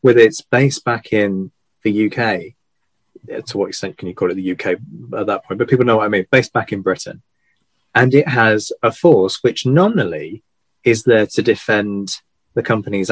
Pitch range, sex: 100-125 Hz, male